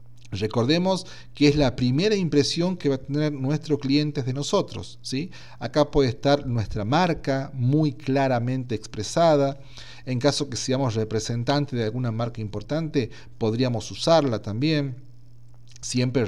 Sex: male